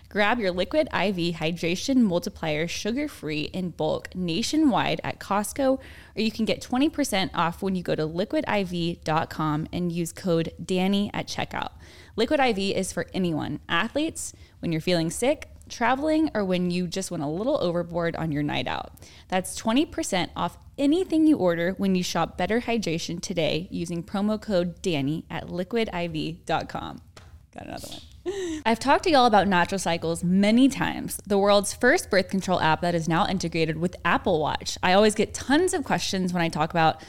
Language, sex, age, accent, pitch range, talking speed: English, female, 10-29, American, 170-225 Hz, 170 wpm